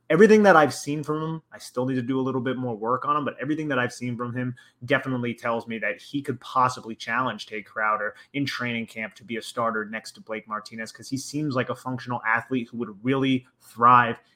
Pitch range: 120-140 Hz